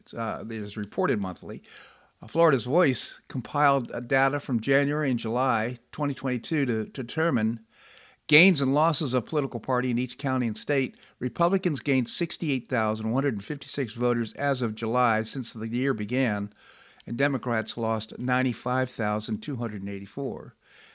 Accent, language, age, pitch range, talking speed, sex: American, English, 50-69, 115-140 Hz, 125 wpm, male